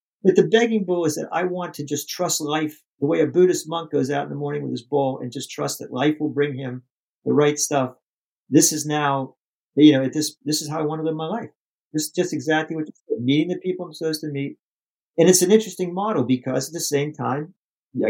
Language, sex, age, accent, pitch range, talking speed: English, male, 50-69, American, 140-185 Hz, 250 wpm